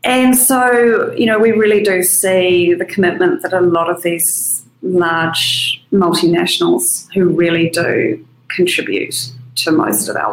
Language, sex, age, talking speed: English, female, 30-49, 145 wpm